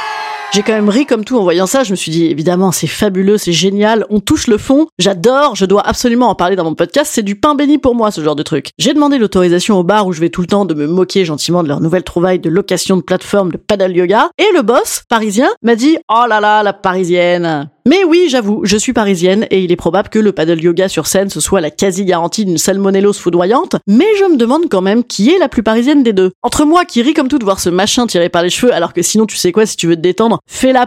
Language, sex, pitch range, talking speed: French, female, 180-245 Hz, 275 wpm